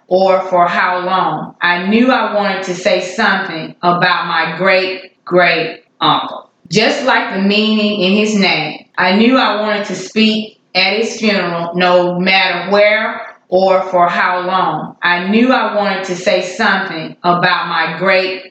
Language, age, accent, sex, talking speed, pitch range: English, 20-39, American, female, 160 wpm, 180-210 Hz